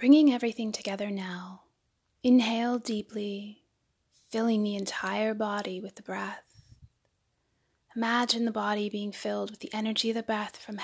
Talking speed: 140 wpm